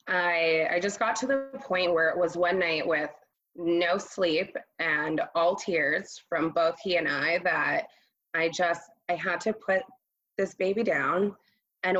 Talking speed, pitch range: 170 wpm, 170-225 Hz